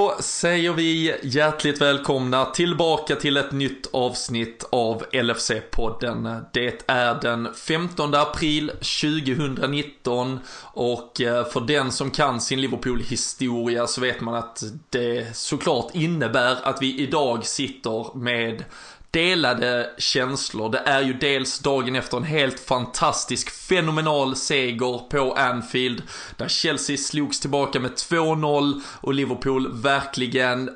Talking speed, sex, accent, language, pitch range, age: 115 wpm, male, native, Swedish, 125-145 Hz, 20-39